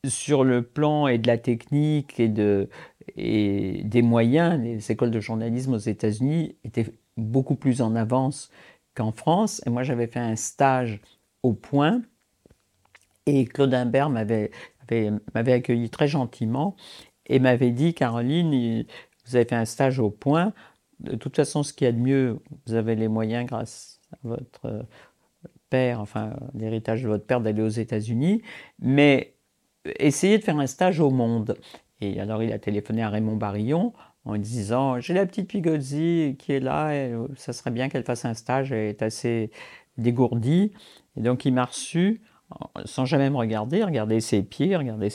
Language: French